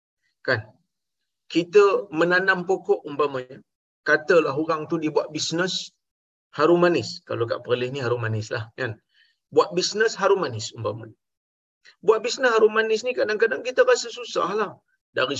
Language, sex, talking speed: Malayalam, male, 140 wpm